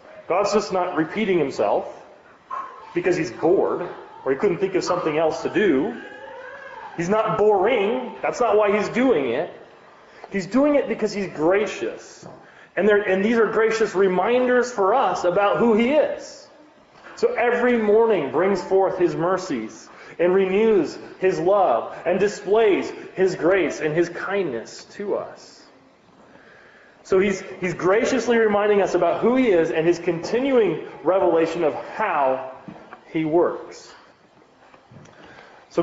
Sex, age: male, 30-49